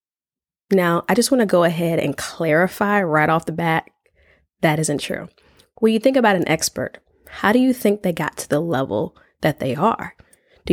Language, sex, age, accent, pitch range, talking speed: English, female, 20-39, American, 165-220 Hz, 195 wpm